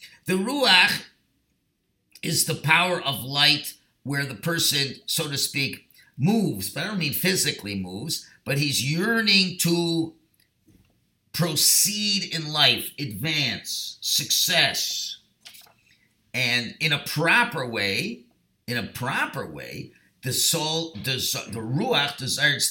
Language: English